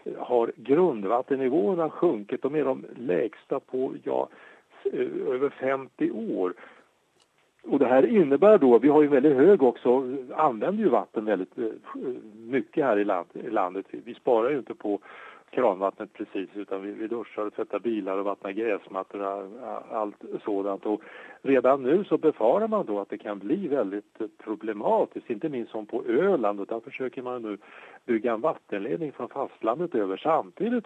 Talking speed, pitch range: 155 wpm, 105-140 Hz